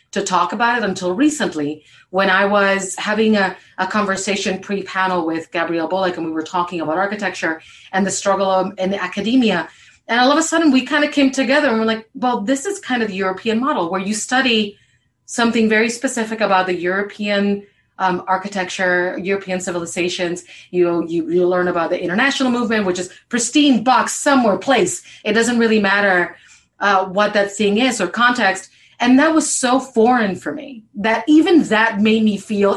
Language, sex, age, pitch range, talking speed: English, female, 30-49, 180-230 Hz, 185 wpm